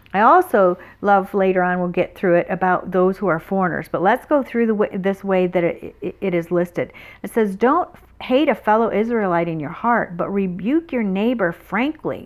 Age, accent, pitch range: 50-69, American, 185-230 Hz